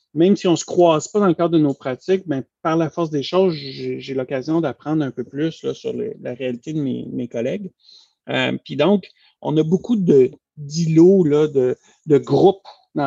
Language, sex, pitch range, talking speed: French, male, 135-185 Hz, 215 wpm